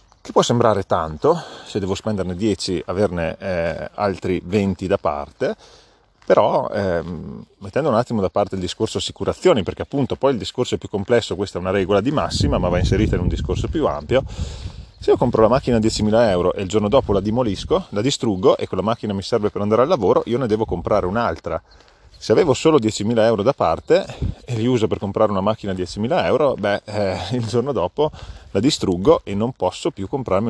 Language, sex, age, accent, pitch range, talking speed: Italian, male, 30-49, native, 95-110 Hz, 205 wpm